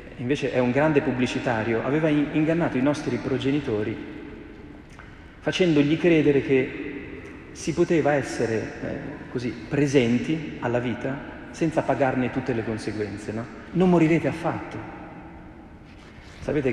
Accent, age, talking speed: native, 40-59, 110 wpm